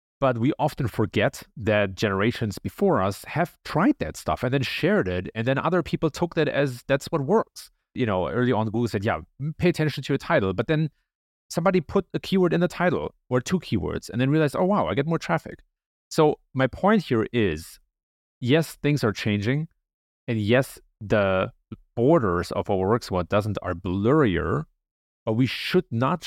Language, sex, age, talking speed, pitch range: English, male, 30-49, 190 wpm, 100-150 Hz